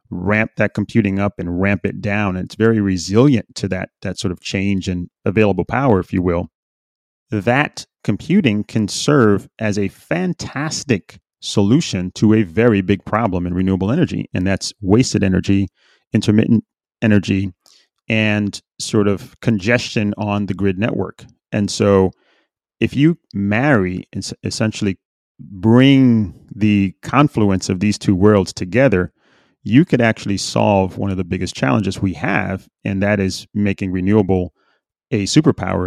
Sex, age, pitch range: male, 30-49, 95-110 Hz